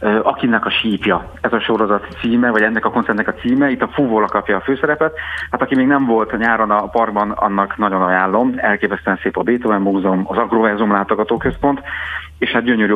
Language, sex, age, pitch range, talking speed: Hungarian, male, 40-59, 95-115 Hz, 190 wpm